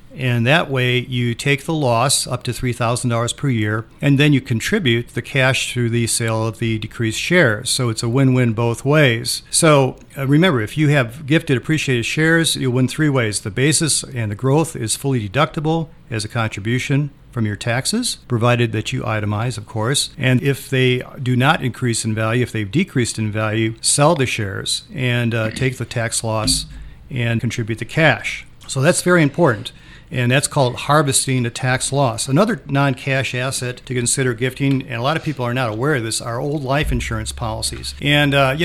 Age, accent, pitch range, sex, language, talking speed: 50-69, American, 120-140 Hz, male, English, 195 wpm